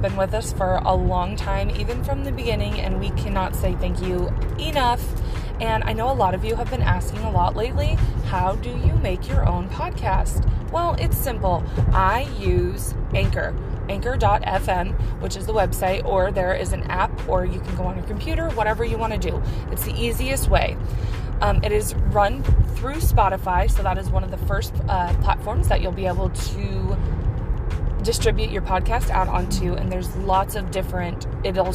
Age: 20-39